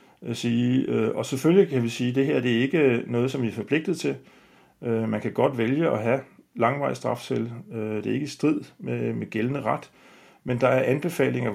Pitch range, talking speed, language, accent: 115-140 Hz, 180 wpm, Danish, native